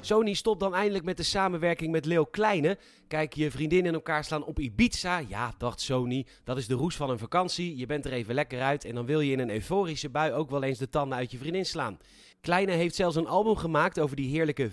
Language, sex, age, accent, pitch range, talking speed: Dutch, male, 30-49, Dutch, 130-180 Hz, 245 wpm